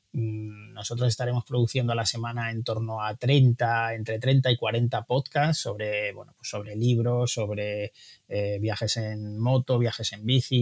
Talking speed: 160 wpm